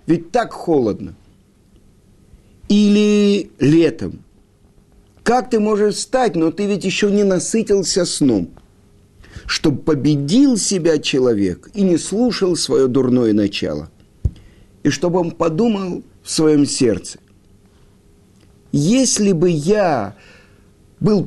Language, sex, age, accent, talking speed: Russian, male, 50-69, native, 105 wpm